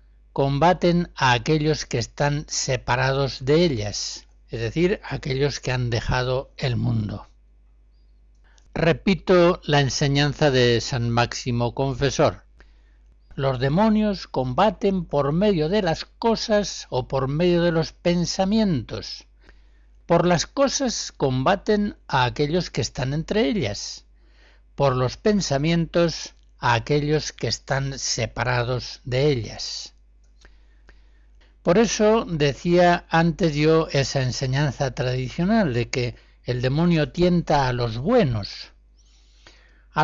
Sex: male